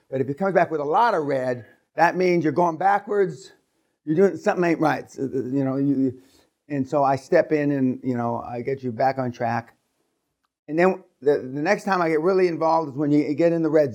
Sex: male